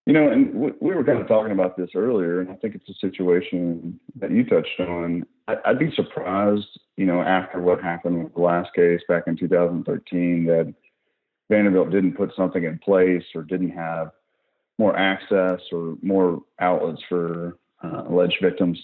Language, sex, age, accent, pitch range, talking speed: English, male, 40-59, American, 85-95 Hz, 175 wpm